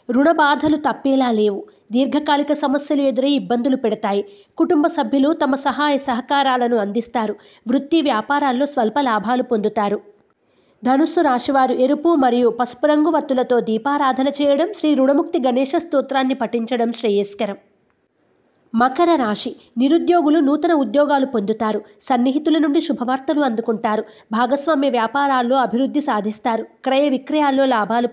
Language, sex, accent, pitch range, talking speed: Telugu, female, native, 235-290 Hz, 105 wpm